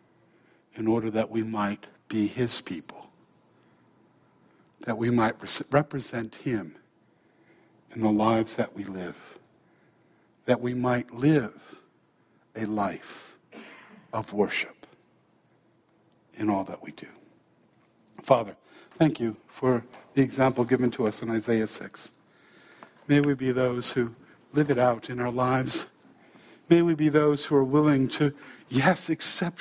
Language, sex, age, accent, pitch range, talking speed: English, male, 60-79, American, 120-160 Hz, 130 wpm